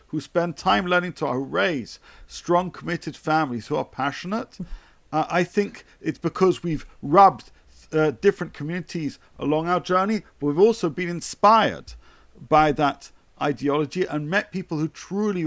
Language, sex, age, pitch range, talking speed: English, male, 50-69, 150-185 Hz, 145 wpm